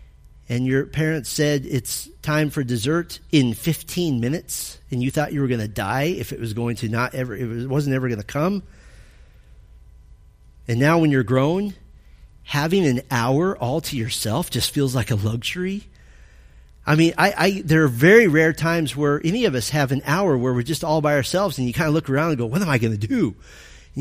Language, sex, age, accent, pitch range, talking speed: English, male, 40-59, American, 115-160 Hz, 215 wpm